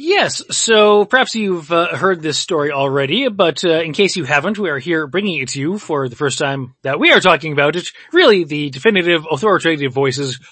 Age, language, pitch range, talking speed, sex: 30-49, English, 145-220 Hz, 210 wpm, male